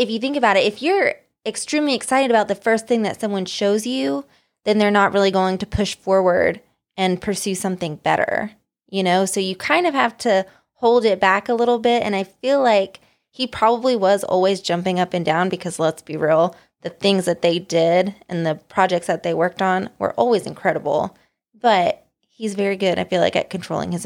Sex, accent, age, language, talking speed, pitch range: female, American, 20-39, English, 210 wpm, 185-220 Hz